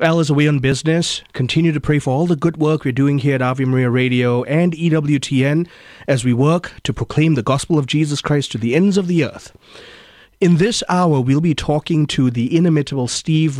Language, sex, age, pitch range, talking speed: English, male, 30-49, 125-165 Hz, 210 wpm